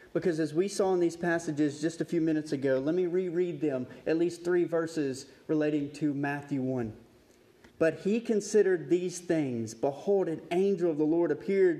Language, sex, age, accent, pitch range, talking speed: English, male, 30-49, American, 130-165 Hz, 185 wpm